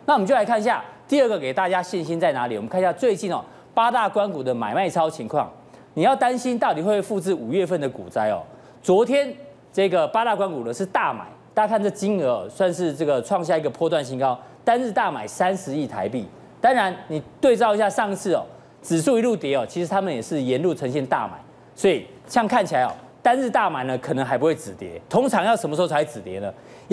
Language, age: Chinese, 40-59